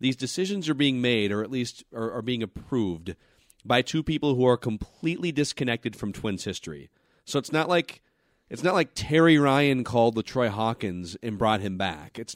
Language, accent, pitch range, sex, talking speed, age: English, American, 110-145 Hz, male, 195 wpm, 30-49